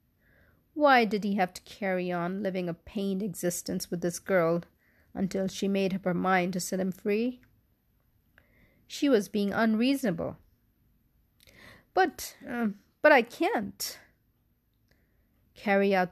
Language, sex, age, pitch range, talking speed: English, female, 40-59, 170-210 Hz, 130 wpm